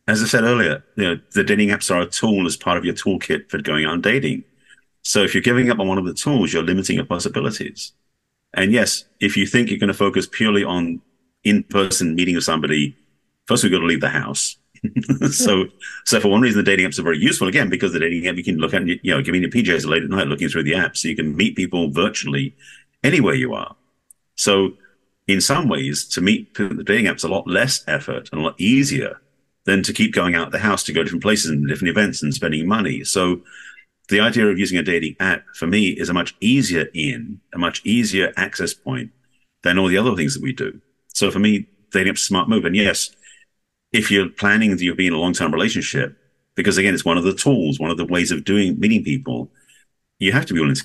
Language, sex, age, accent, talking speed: English, male, 50-69, British, 235 wpm